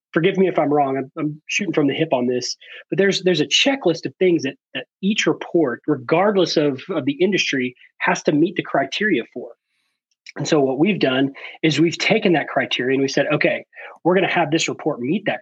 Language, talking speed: English, 220 wpm